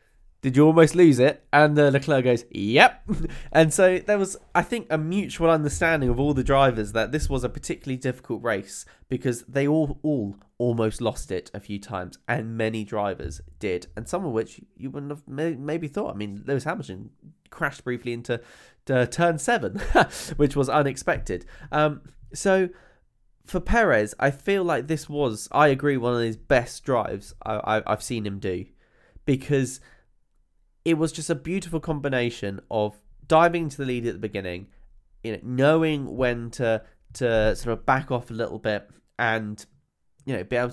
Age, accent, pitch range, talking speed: 10-29, British, 110-150 Hz, 175 wpm